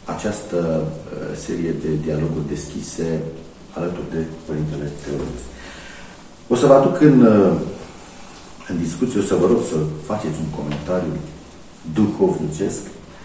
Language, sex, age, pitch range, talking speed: Romanian, male, 50-69, 75-115 Hz, 115 wpm